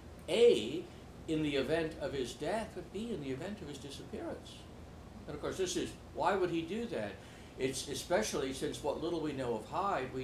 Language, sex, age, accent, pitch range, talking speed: English, male, 60-79, American, 115-180 Hz, 205 wpm